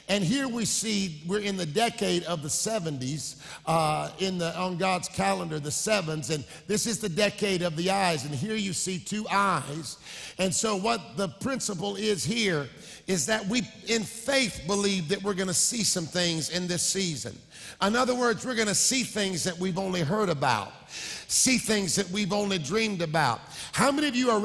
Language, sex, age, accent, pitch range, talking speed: English, male, 50-69, American, 180-220 Hz, 200 wpm